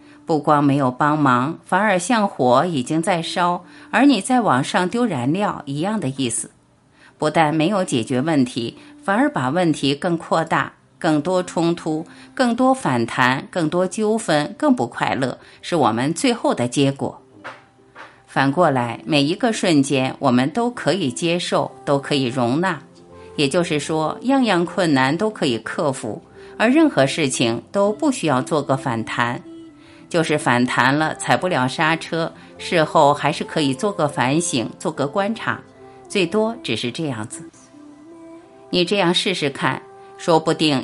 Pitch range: 135-205 Hz